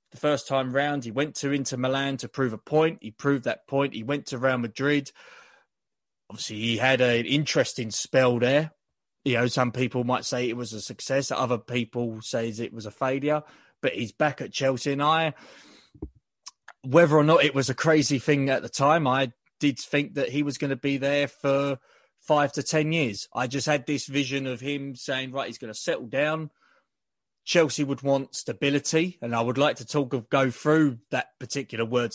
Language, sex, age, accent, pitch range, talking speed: English, male, 20-39, British, 120-145 Hz, 205 wpm